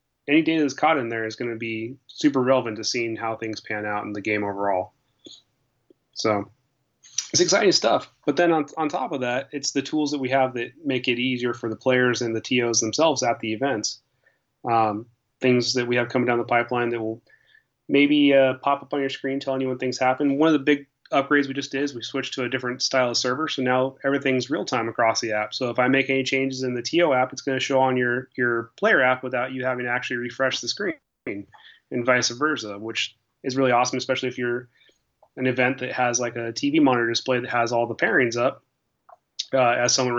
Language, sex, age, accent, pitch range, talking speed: English, male, 30-49, American, 120-135 Hz, 235 wpm